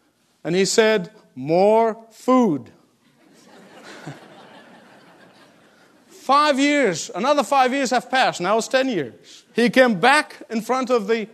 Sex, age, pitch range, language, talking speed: male, 50-69, 215-265 Hz, English, 120 wpm